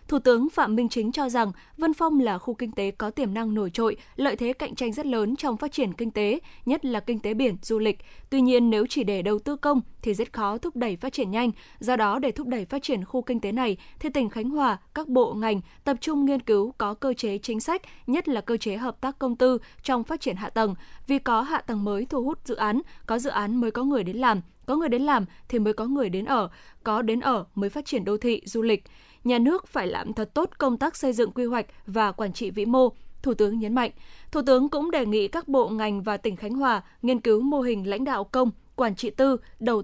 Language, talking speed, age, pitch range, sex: Vietnamese, 260 wpm, 10-29, 220-265 Hz, female